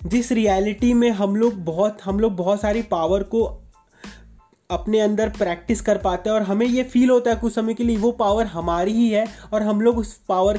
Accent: native